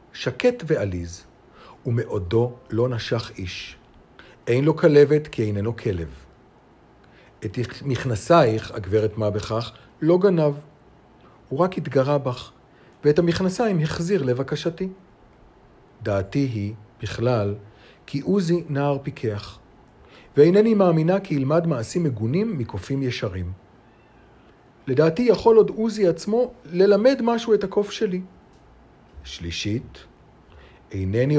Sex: male